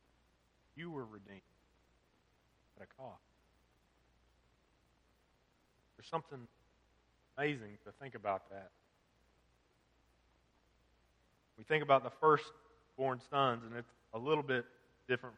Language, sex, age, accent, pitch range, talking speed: English, male, 30-49, American, 105-150 Hz, 100 wpm